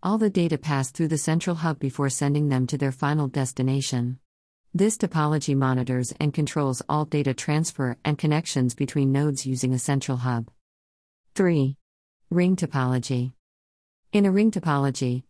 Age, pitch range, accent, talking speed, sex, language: 50-69, 130-150 Hz, American, 150 wpm, female, English